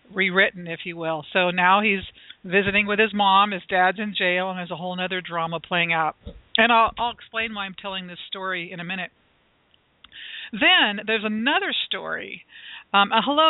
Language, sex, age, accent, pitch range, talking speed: English, female, 50-69, American, 180-225 Hz, 185 wpm